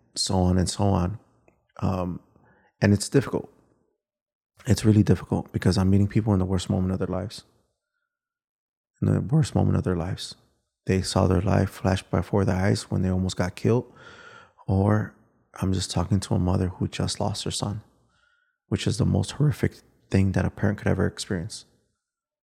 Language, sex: English, male